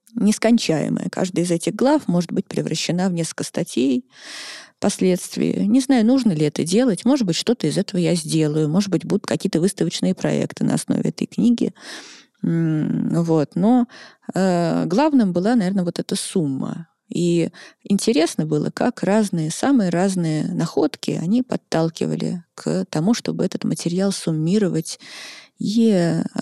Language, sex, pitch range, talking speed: Russian, female, 160-225 Hz, 135 wpm